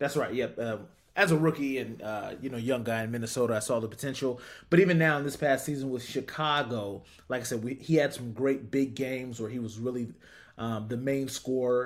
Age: 30-49